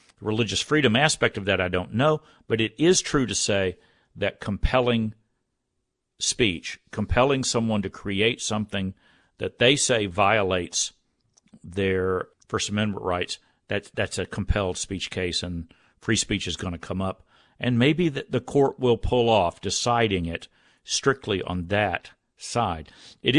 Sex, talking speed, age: male, 150 wpm, 50-69